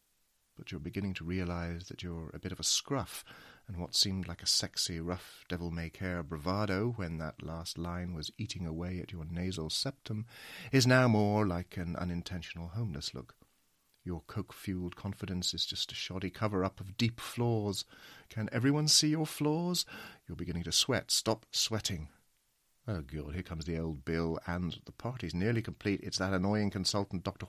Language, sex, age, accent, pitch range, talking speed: English, male, 40-59, British, 85-105 Hz, 170 wpm